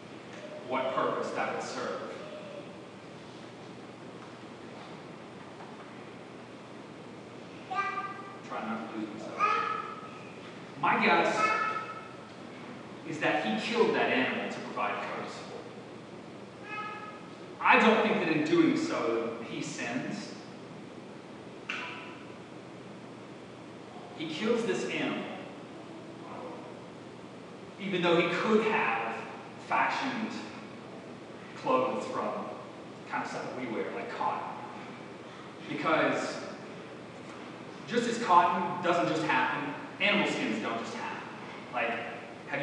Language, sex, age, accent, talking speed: English, male, 30-49, American, 95 wpm